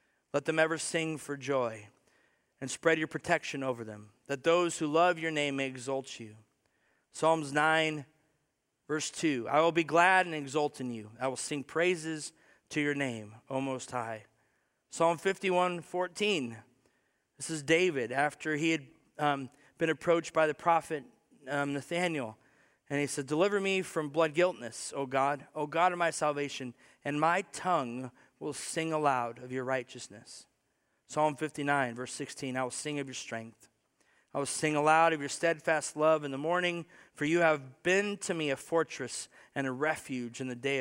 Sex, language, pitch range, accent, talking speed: male, English, 130-160 Hz, American, 175 wpm